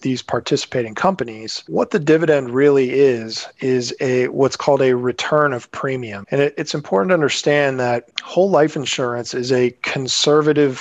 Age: 40-59